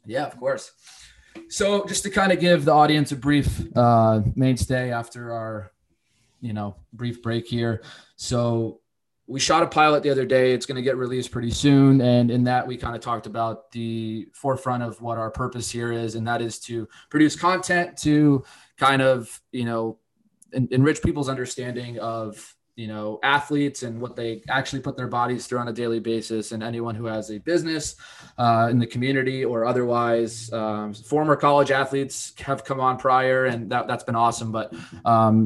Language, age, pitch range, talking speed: English, 20-39, 115-135 Hz, 185 wpm